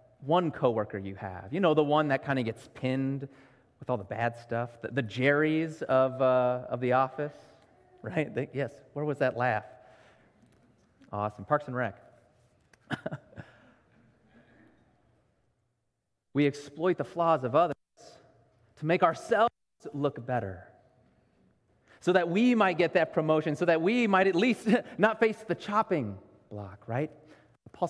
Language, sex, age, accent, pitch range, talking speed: English, male, 30-49, American, 115-180 Hz, 145 wpm